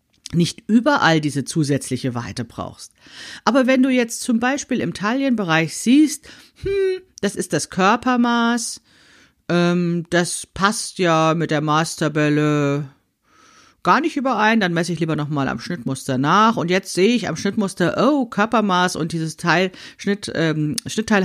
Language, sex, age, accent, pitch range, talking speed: German, female, 50-69, German, 150-215 Hz, 145 wpm